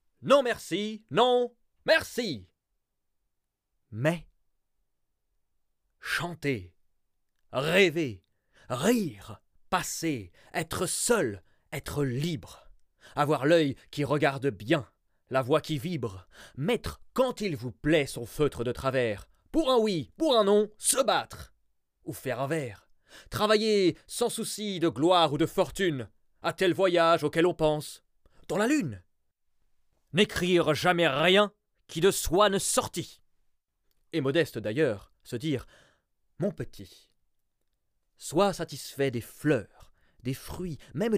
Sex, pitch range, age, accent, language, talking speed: male, 110-185 Hz, 30-49, French, French, 120 wpm